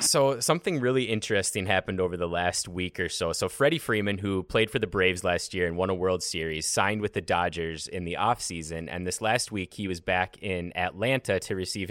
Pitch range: 90-115 Hz